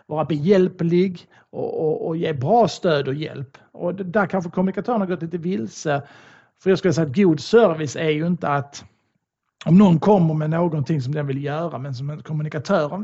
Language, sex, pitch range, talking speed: Swedish, male, 145-190 Hz, 190 wpm